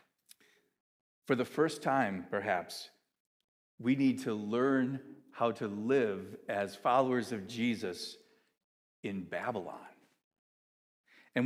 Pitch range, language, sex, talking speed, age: 130-195 Hz, English, male, 100 wpm, 50-69